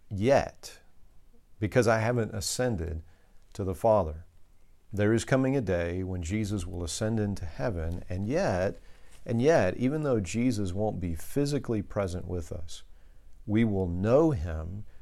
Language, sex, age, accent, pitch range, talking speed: English, male, 50-69, American, 85-110 Hz, 145 wpm